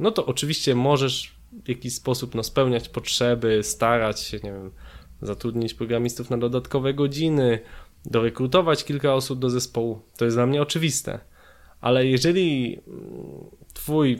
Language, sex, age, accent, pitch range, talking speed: Polish, male, 20-39, native, 115-145 Hz, 135 wpm